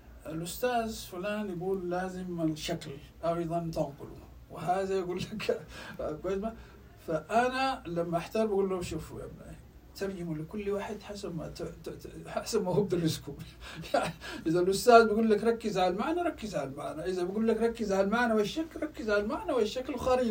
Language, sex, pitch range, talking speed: Arabic, male, 175-230 Hz, 150 wpm